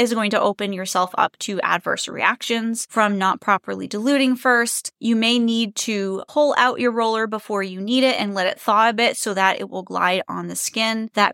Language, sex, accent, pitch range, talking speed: English, female, American, 200-260 Hz, 215 wpm